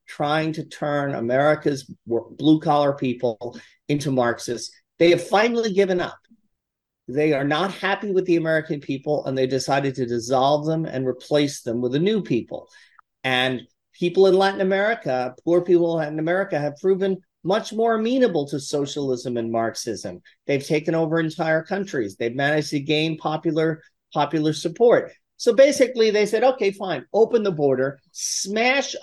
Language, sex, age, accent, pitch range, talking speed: English, male, 40-59, American, 140-185 Hz, 155 wpm